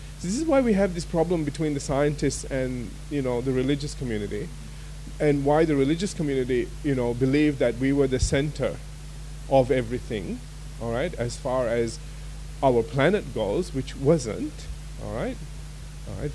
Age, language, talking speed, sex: 30-49, English, 160 wpm, male